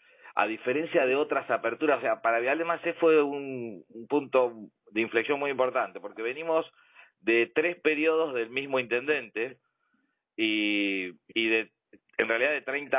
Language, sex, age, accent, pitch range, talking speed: Spanish, male, 40-59, Argentinian, 115-145 Hz, 155 wpm